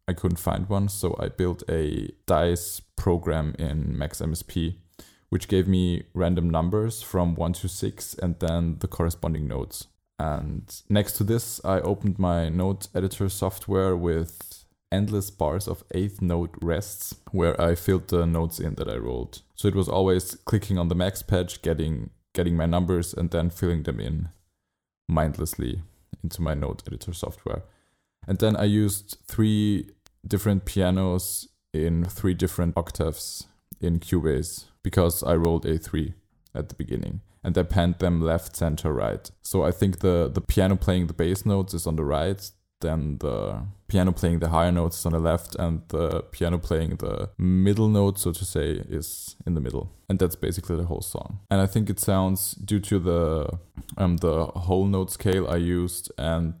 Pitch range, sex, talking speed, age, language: 85-95 Hz, male, 175 wpm, 20-39, English